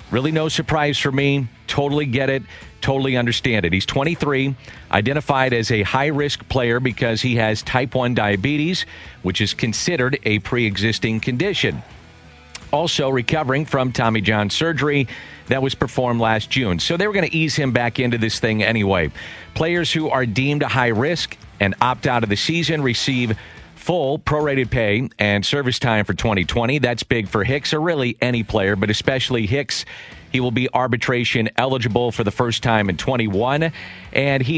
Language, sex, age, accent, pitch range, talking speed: English, male, 50-69, American, 110-135 Hz, 170 wpm